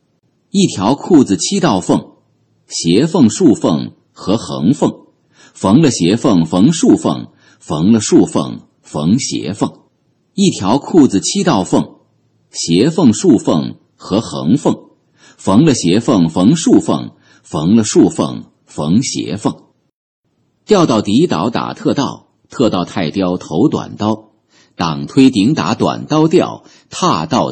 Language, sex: Chinese, male